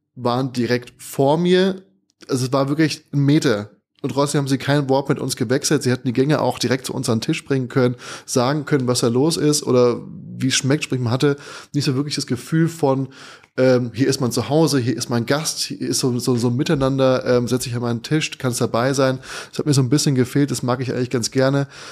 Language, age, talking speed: German, 20-39, 245 wpm